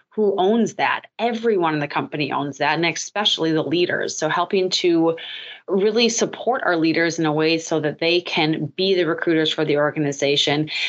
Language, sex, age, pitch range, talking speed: English, female, 30-49, 155-185 Hz, 180 wpm